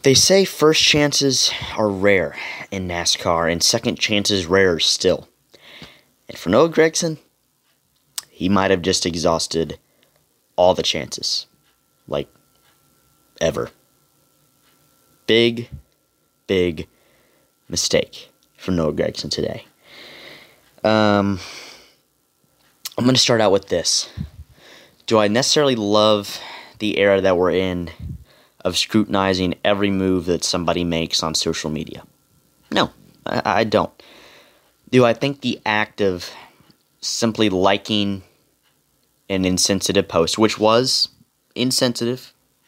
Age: 20-39